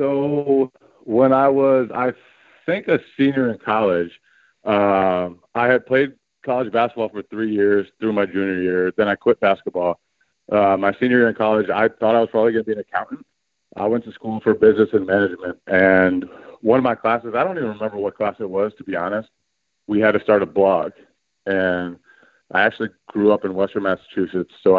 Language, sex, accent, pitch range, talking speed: English, male, American, 90-110 Hz, 200 wpm